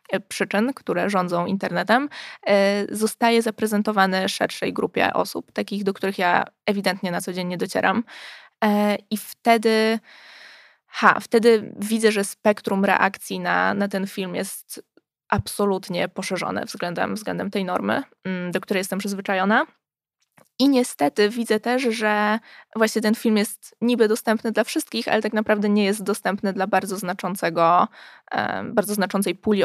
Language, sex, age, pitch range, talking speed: Polish, female, 20-39, 190-220 Hz, 135 wpm